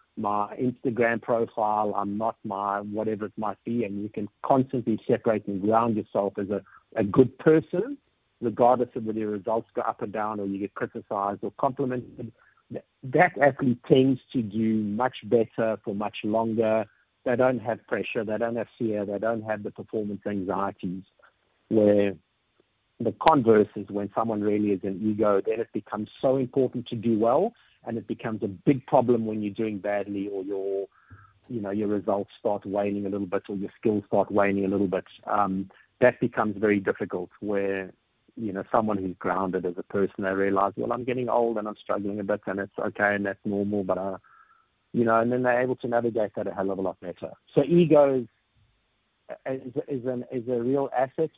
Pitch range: 100-125 Hz